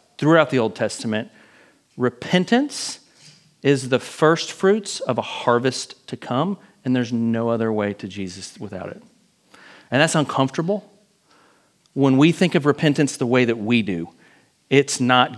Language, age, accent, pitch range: English, 40-59, American, 130-175 Hz